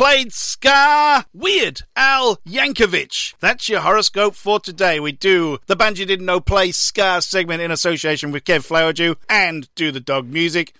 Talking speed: 165 wpm